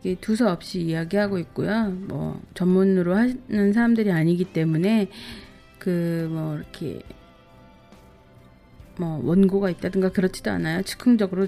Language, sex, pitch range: Korean, female, 170-215 Hz